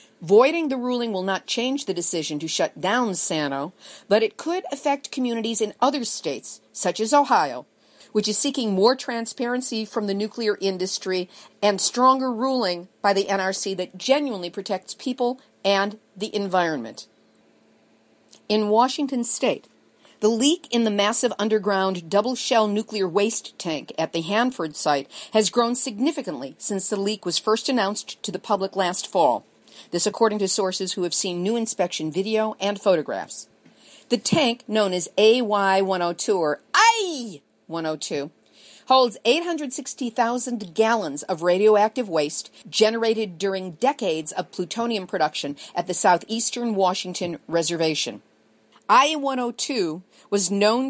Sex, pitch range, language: female, 185-240 Hz, English